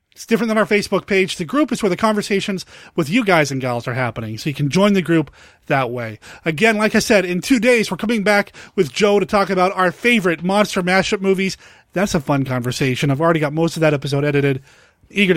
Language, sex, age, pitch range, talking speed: English, male, 30-49, 160-205 Hz, 235 wpm